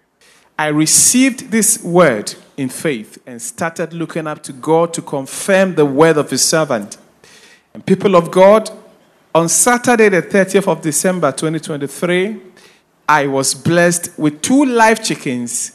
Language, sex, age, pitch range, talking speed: English, male, 40-59, 145-200 Hz, 140 wpm